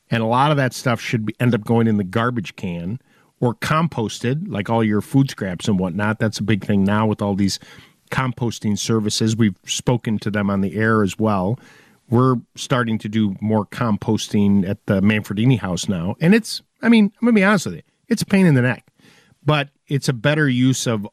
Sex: male